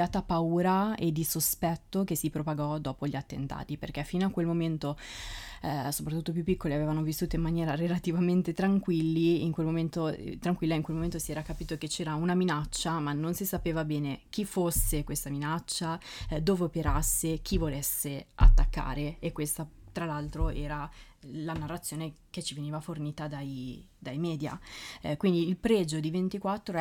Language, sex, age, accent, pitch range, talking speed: Italian, female, 20-39, native, 150-175 Hz, 170 wpm